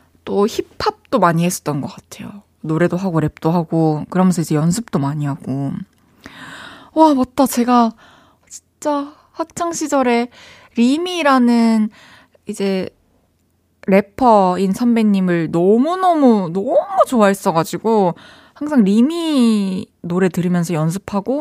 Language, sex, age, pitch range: Korean, female, 20-39, 175-245 Hz